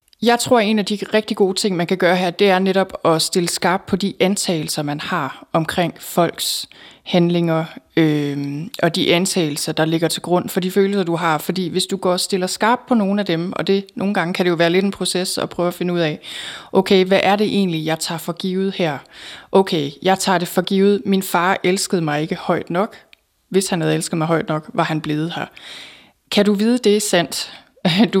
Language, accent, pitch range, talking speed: Danish, native, 170-200 Hz, 230 wpm